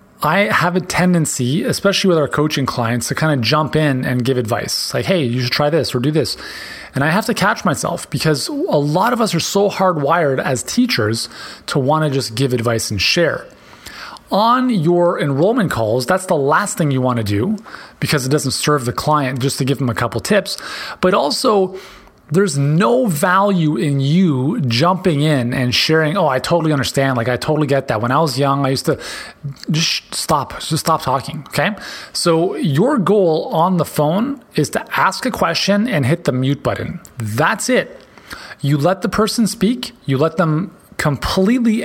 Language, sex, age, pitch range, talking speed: English, male, 30-49, 135-190 Hz, 195 wpm